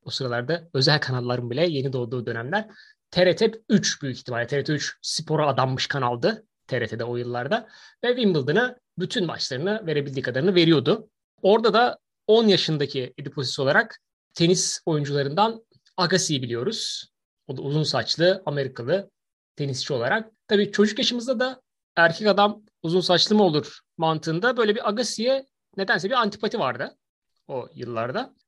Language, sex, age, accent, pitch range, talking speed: Turkish, male, 30-49, native, 145-215 Hz, 130 wpm